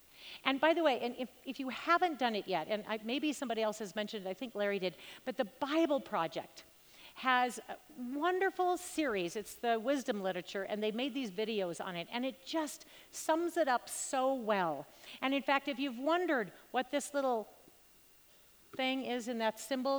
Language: English